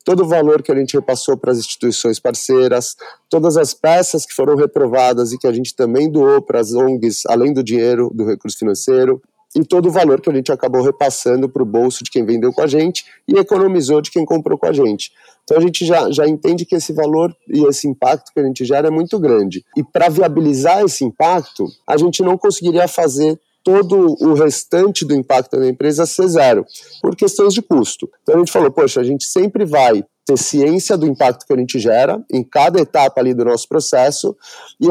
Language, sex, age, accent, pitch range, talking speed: Portuguese, male, 30-49, Brazilian, 135-180 Hz, 215 wpm